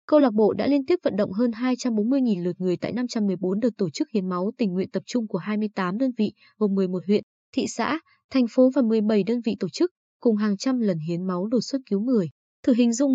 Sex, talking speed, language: female, 240 wpm, Vietnamese